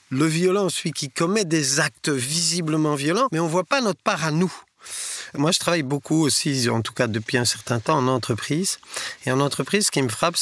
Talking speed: 225 wpm